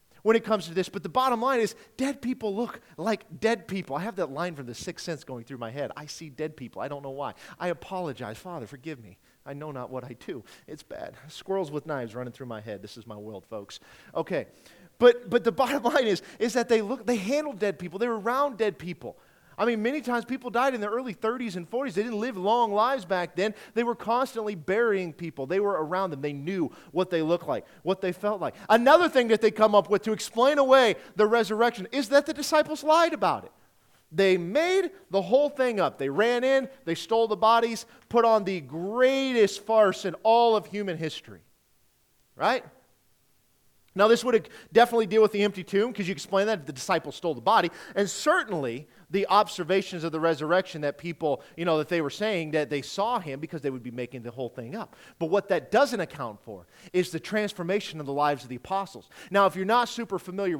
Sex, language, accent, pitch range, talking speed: male, English, American, 160-230 Hz, 225 wpm